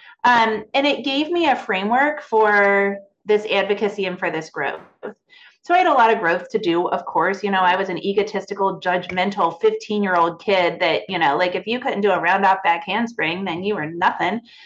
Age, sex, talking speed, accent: 30-49, female, 215 wpm, American